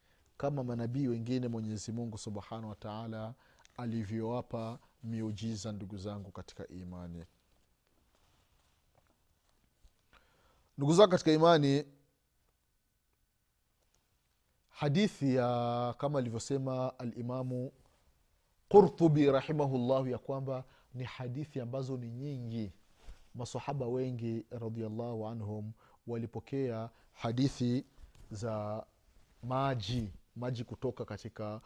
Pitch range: 105-130 Hz